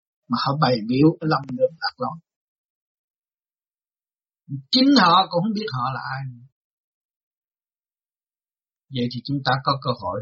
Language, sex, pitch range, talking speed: Vietnamese, male, 120-170 Hz, 135 wpm